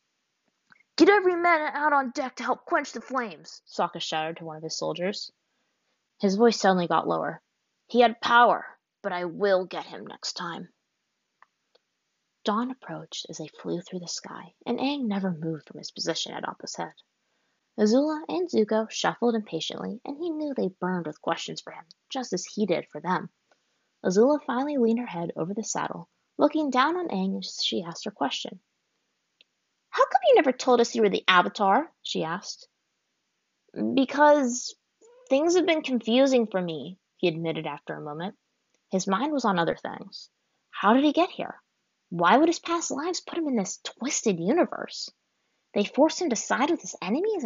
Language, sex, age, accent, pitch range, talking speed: English, female, 20-39, American, 190-300 Hz, 180 wpm